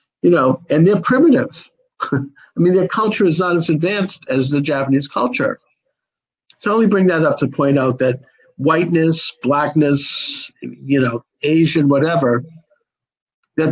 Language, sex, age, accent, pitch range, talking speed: English, male, 50-69, American, 135-175 Hz, 150 wpm